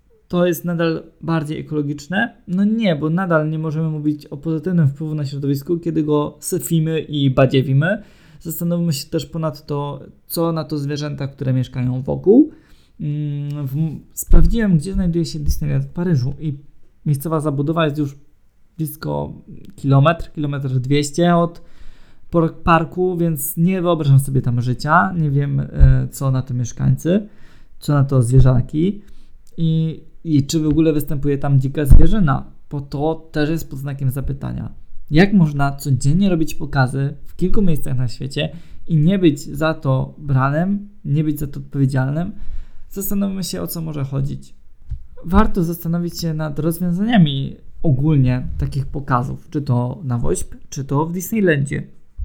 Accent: native